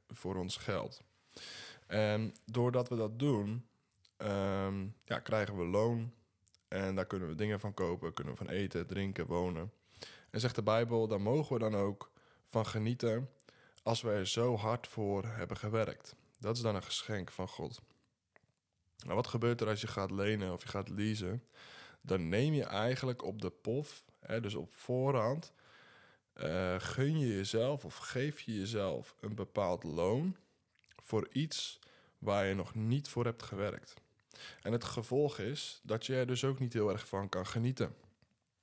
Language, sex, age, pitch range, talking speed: Dutch, male, 20-39, 95-115 Hz, 170 wpm